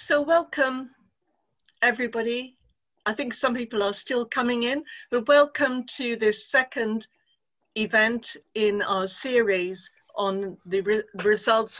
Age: 50-69